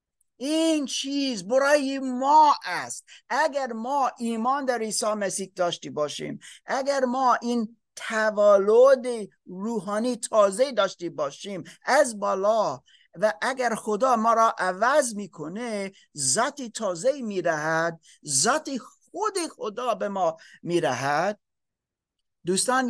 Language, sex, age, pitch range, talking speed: Persian, male, 50-69, 205-275 Hz, 115 wpm